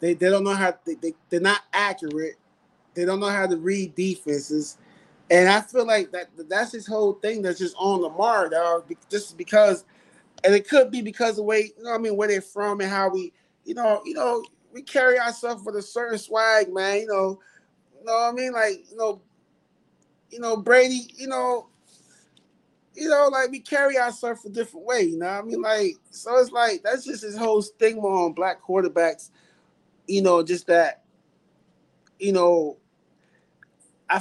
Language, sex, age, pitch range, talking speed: English, male, 20-39, 175-225 Hz, 200 wpm